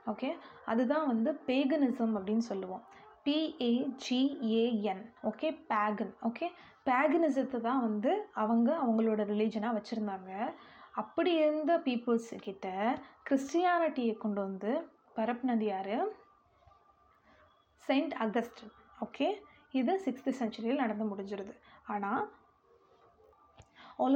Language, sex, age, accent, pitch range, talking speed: Tamil, female, 20-39, native, 220-290 Hz, 85 wpm